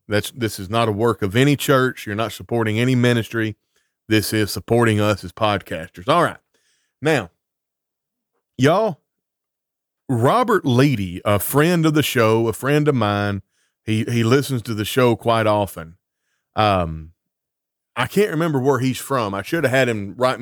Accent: American